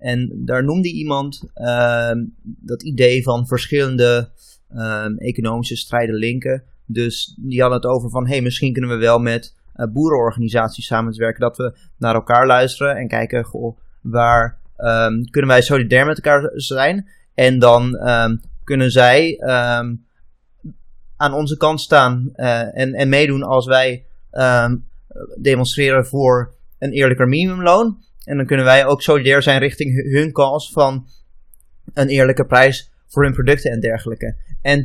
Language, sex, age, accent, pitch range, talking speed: Dutch, male, 20-39, Dutch, 120-150 Hz, 140 wpm